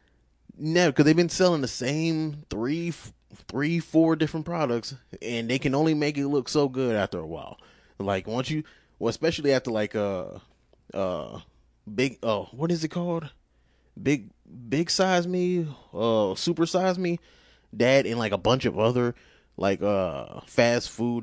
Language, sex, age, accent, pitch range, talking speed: English, male, 20-39, American, 100-145 Hz, 165 wpm